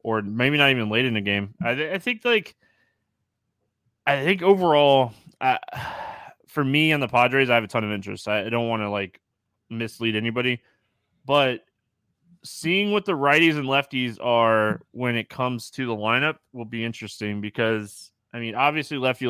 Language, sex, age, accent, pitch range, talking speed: English, male, 20-39, American, 110-140 Hz, 180 wpm